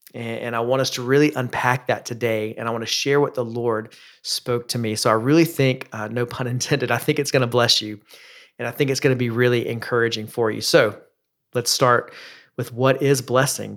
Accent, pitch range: American, 115-135 Hz